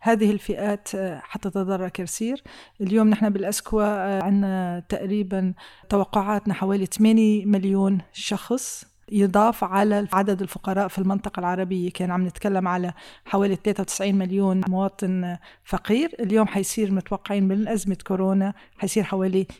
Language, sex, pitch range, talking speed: Arabic, female, 190-215 Hz, 120 wpm